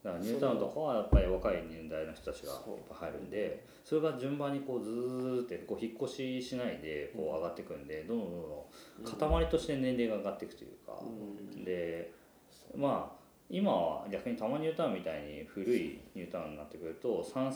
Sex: male